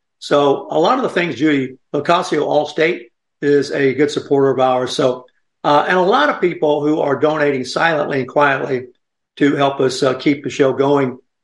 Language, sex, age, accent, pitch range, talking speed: English, male, 50-69, American, 135-155 Hz, 190 wpm